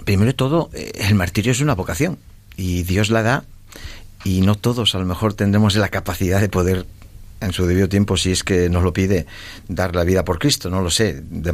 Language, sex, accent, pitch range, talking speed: Spanish, male, Spanish, 90-115 Hz, 220 wpm